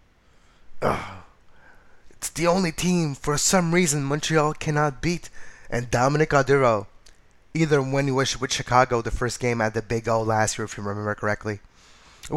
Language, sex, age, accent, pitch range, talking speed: English, male, 20-39, American, 105-140 Hz, 165 wpm